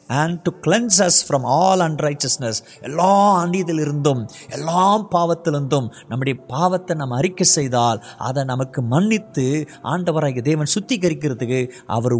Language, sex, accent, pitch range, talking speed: Tamil, male, native, 140-180 Hz, 110 wpm